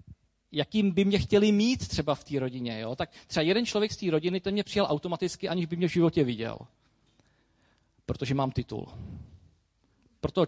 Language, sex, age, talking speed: Czech, male, 40-59, 185 wpm